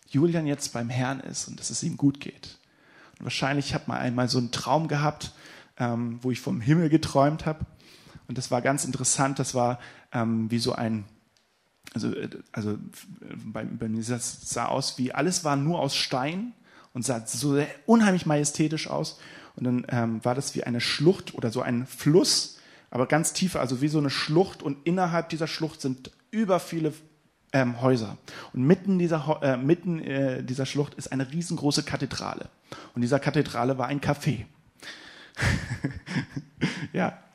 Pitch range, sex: 125-160 Hz, male